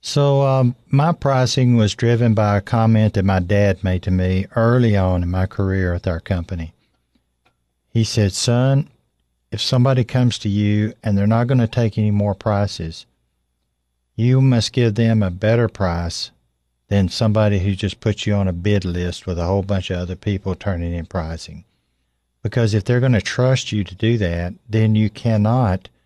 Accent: American